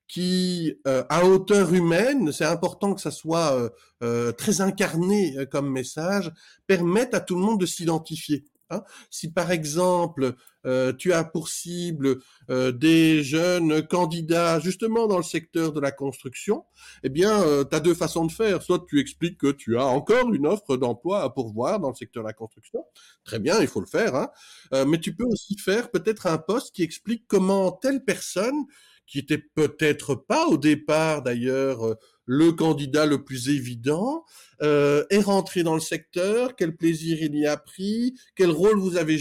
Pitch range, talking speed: 145-195 Hz, 180 wpm